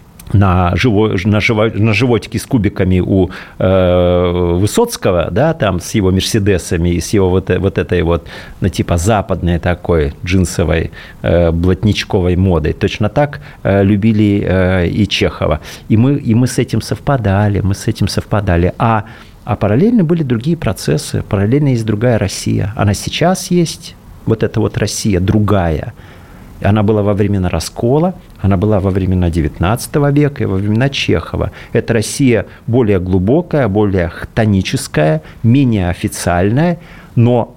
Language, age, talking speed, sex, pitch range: Russian, 40-59, 125 wpm, male, 90-115 Hz